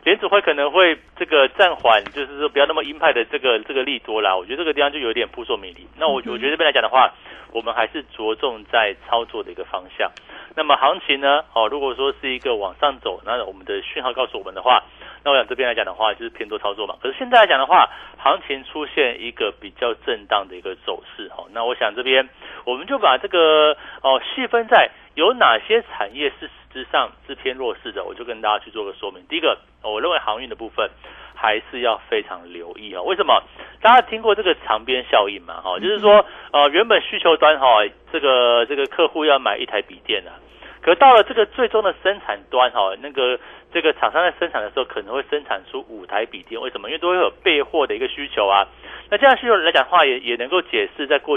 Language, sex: Chinese, male